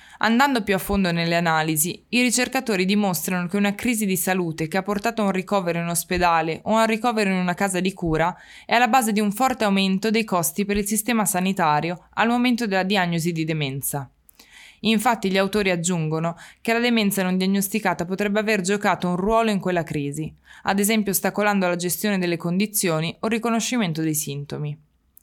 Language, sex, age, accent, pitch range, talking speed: Italian, female, 20-39, native, 175-220 Hz, 190 wpm